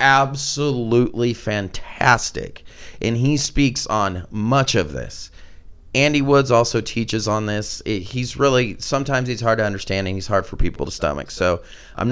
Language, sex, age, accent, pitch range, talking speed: English, male, 30-49, American, 105-135 Hz, 155 wpm